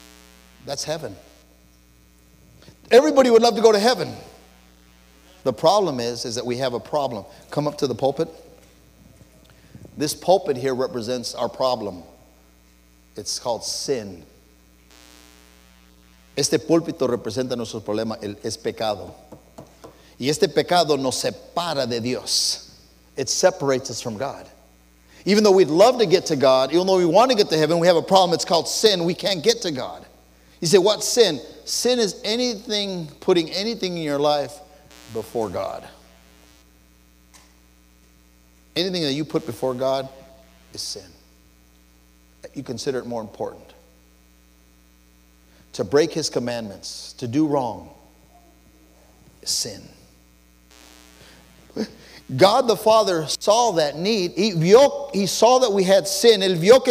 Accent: American